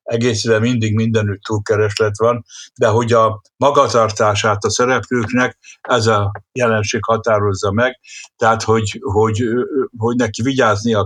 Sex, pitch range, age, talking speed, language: male, 105-120 Hz, 60-79, 120 wpm, Hungarian